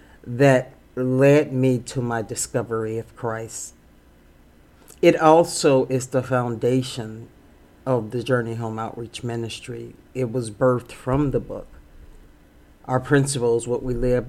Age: 50-69